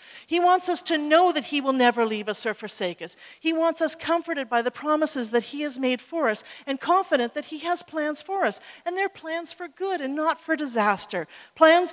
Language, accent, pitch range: English, American, 205-285 Hz